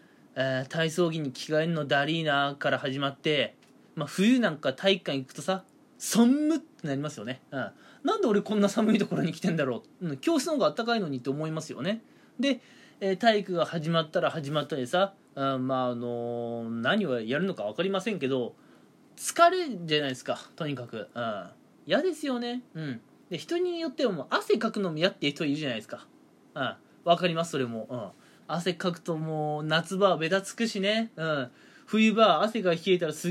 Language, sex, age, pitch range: Japanese, male, 20-39, 150-225 Hz